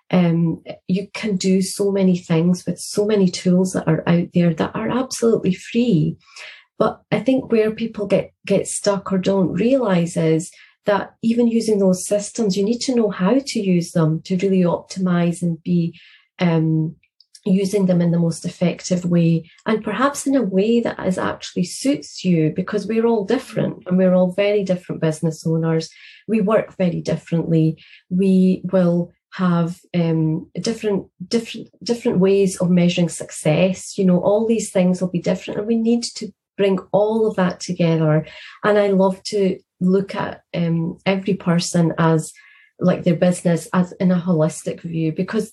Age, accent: 30-49, British